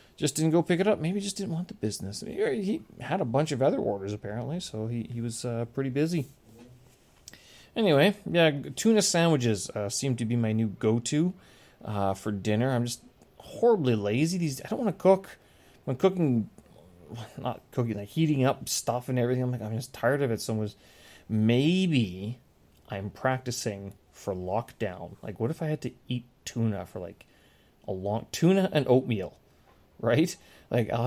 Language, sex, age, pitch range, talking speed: English, male, 30-49, 110-145 Hz, 185 wpm